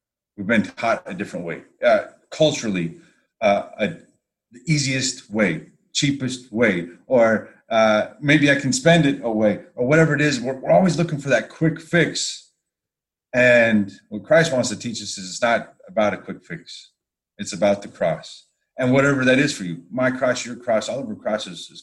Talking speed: 185 wpm